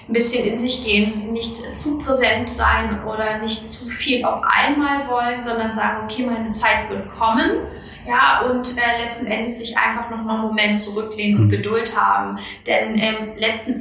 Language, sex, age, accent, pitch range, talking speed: German, female, 20-39, German, 215-245 Hz, 180 wpm